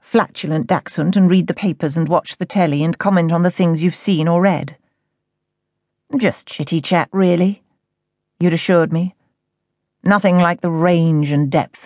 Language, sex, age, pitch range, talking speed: English, female, 40-59, 165-200 Hz, 160 wpm